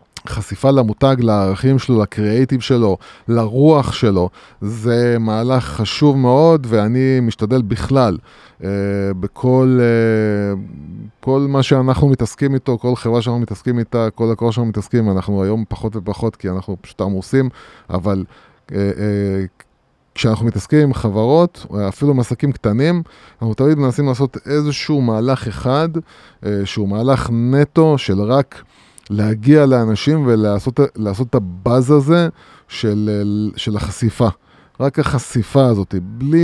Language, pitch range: Hebrew, 105-135 Hz